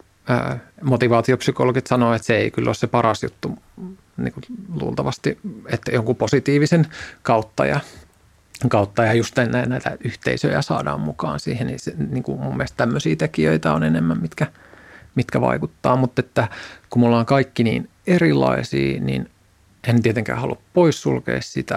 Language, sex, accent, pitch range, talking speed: Finnish, male, native, 80-125 Hz, 145 wpm